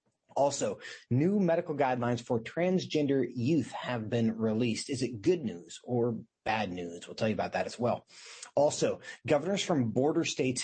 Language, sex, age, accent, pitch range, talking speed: English, male, 30-49, American, 115-170 Hz, 165 wpm